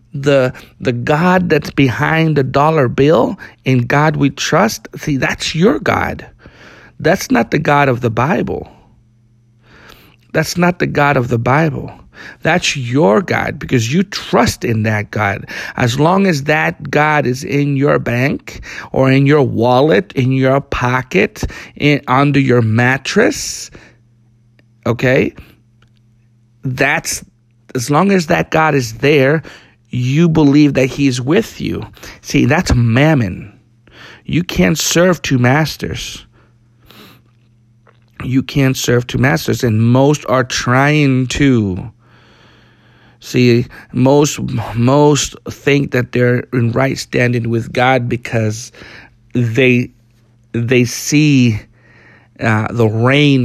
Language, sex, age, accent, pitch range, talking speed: English, male, 50-69, American, 115-140 Hz, 125 wpm